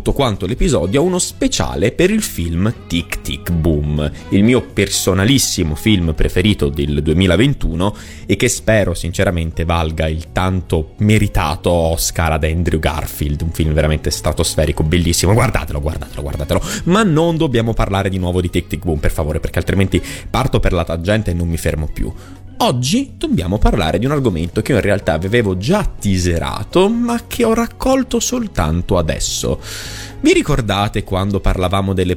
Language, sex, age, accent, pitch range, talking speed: Italian, male, 30-49, native, 85-115 Hz, 160 wpm